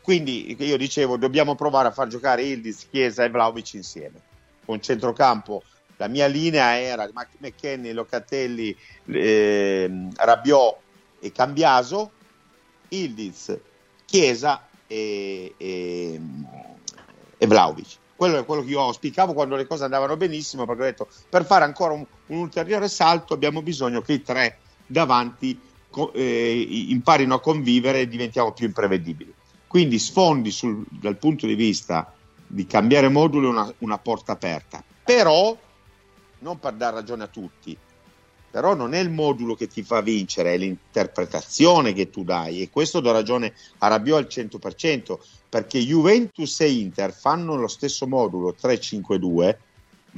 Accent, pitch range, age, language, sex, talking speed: native, 110-150 Hz, 50-69, Italian, male, 140 wpm